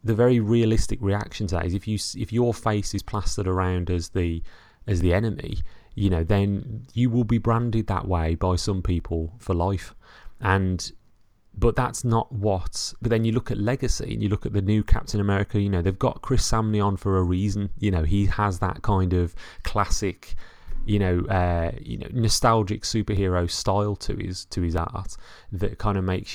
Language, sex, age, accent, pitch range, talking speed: English, male, 30-49, British, 90-110 Hz, 200 wpm